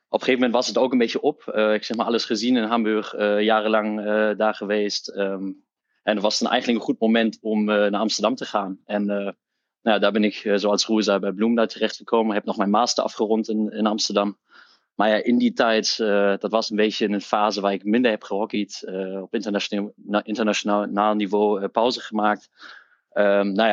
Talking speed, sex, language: 225 wpm, male, Dutch